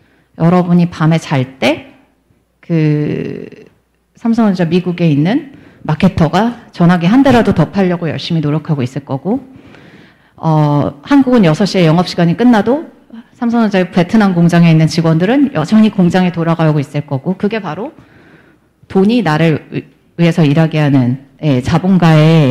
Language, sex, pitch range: Korean, female, 165-225 Hz